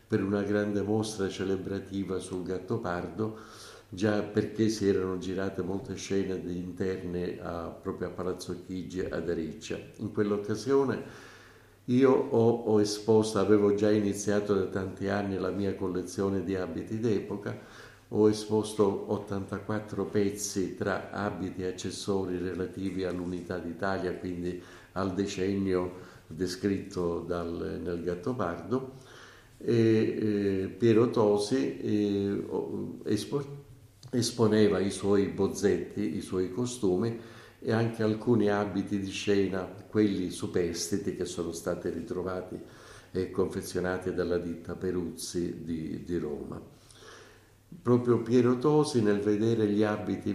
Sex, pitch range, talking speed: male, 90-110 Hz, 115 wpm